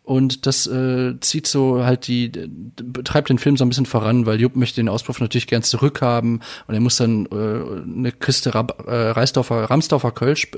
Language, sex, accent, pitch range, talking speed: German, male, German, 110-125 Hz, 185 wpm